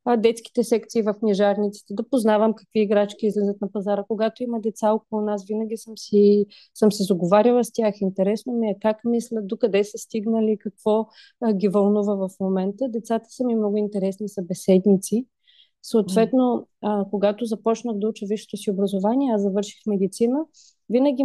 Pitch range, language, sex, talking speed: 205-240 Hz, Bulgarian, female, 165 wpm